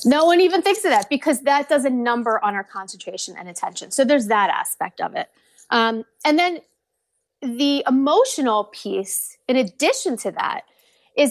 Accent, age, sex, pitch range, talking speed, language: American, 30-49, female, 225-305 Hz, 175 wpm, English